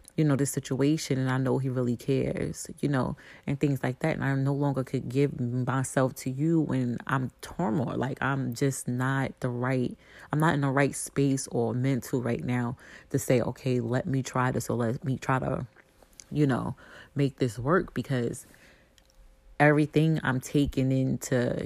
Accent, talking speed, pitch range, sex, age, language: American, 185 wpm, 125-140 Hz, female, 30-49, English